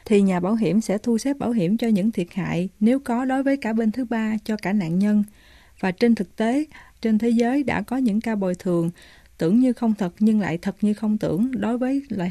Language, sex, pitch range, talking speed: Vietnamese, female, 190-230 Hz, 250 wpm